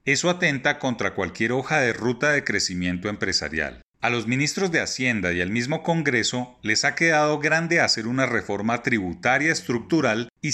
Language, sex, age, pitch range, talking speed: Spanish, male, 40-59, 115-150 Hz, 165 wpm